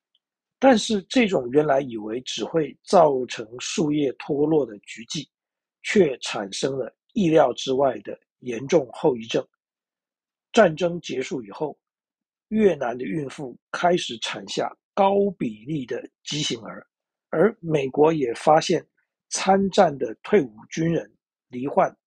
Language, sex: Chinese, male